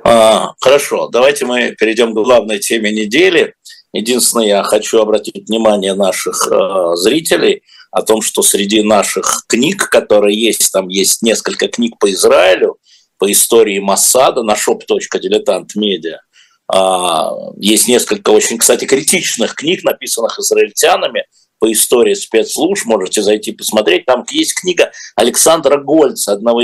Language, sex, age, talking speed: Russian, male, 50-69, 125 wpm